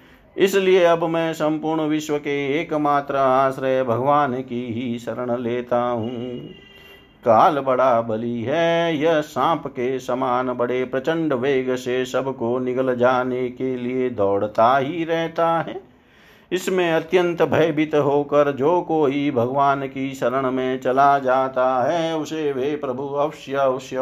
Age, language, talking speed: 50-69, Hindi, 130 wpm